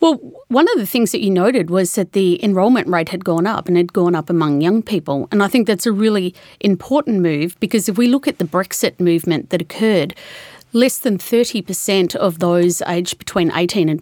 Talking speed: 215 wpm